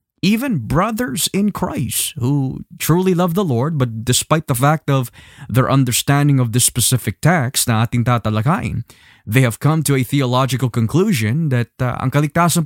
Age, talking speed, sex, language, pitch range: 20-39, 155 wpm, male, Filipino, 120-160 Hz